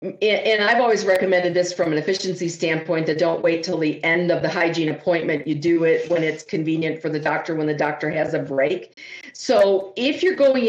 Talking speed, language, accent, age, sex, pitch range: 215 wpm, English, American, 50-69, female, 155-195 Hz